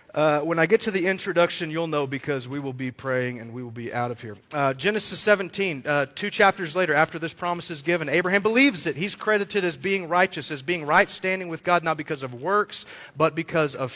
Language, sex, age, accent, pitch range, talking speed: English, male, 40-59, American, 145-175 Hz, 230 wpm